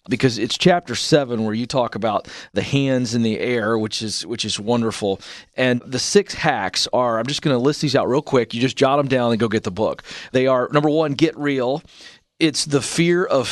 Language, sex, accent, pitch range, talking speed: English, male, American, 110-145 Hz, 230 wpm